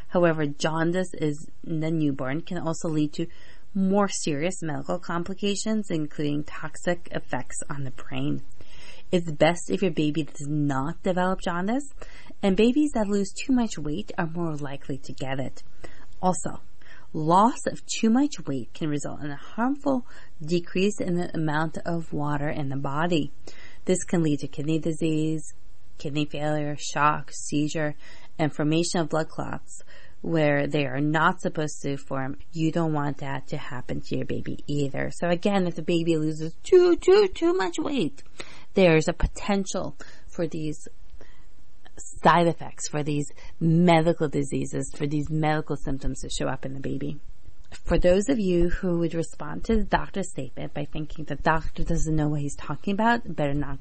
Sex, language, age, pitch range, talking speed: female, English, 30-49, 145-180 Hz, 165 wpm